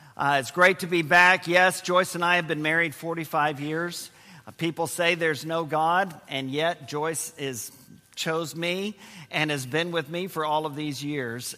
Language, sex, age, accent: English, male, 50-69, American